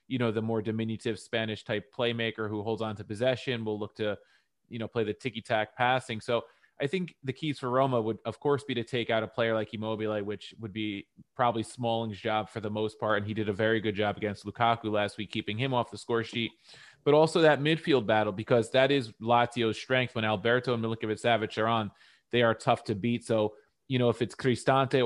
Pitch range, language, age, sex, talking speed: 110-120 Hz, English, 20-39, male, 230 wpm